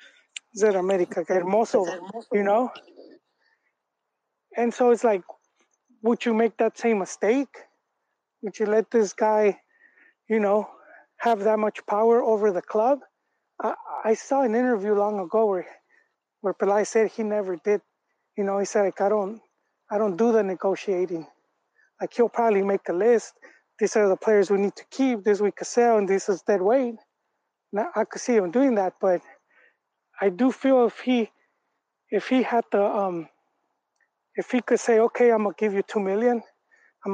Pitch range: 195-230 Hz